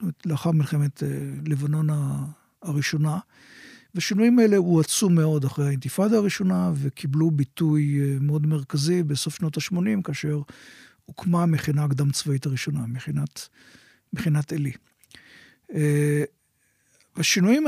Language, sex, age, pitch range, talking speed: Hebrew, male, 50-69, 145-170 Hz, 95 wpm